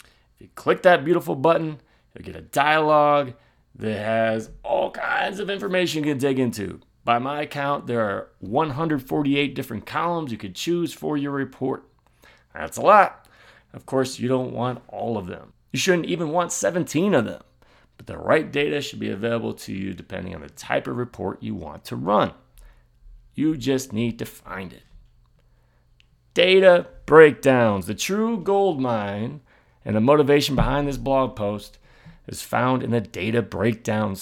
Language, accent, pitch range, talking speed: English, American, 115-145 Hz, 165 wpm